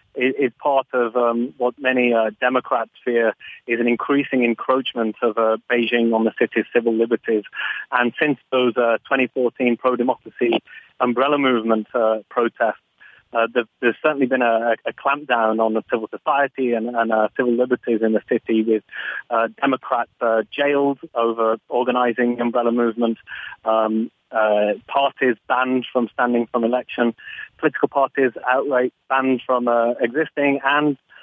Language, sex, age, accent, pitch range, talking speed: English, male, 30-49, British, 115-130 Hz, 145 wpm